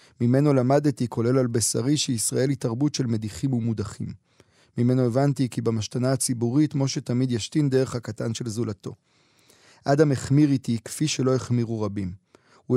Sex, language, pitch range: male, Hebrew, 120-140 Hz